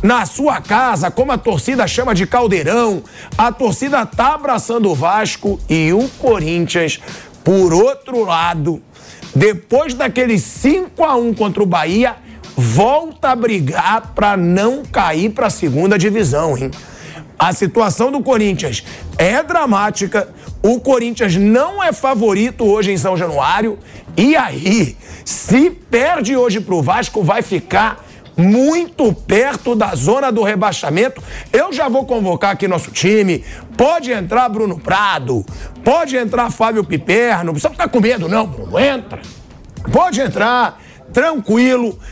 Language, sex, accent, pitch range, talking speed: Portuguese, male, Brazilian, 175-245 Hz, 135 wpm